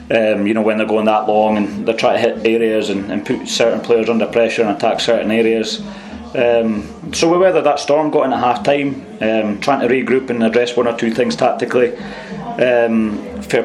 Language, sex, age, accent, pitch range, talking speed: English, male, 30-49, British, 100-125 Hz, 210 wpm